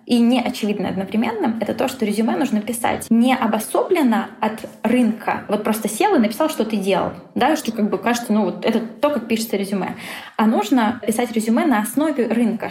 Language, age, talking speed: Russian, 20-39, 195 wpm